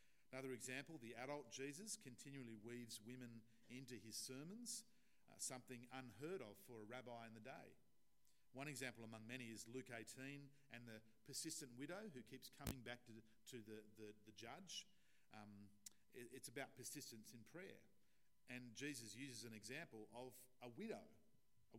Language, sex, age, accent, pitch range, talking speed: English, male, 50-69, Australian, 110-130 Hz, 150 wpm